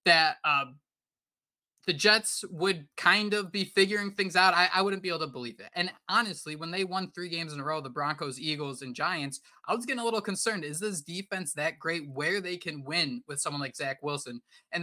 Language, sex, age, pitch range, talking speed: English, male, 20-39, 145-200 Hz, 215 wpm